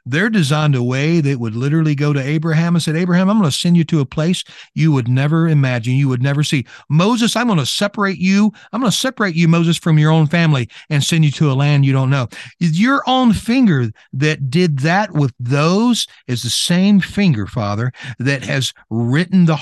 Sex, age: male, 40-59